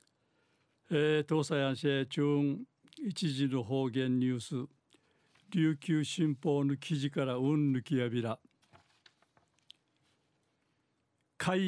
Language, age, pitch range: Japanese, 60-79, 135-165 Hz